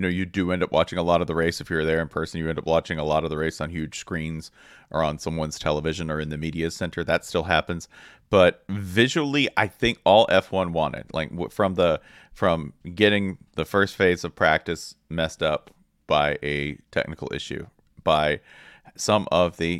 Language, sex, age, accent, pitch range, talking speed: English, male, 40-59, American, 80-90 Hz, 205 wpm